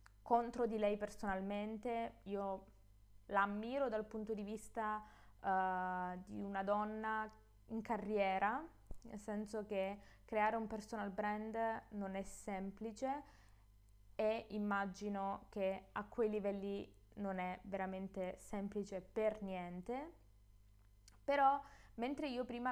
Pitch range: 190-220 Hz